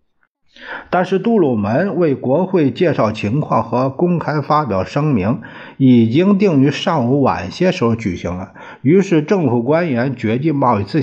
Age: 50-69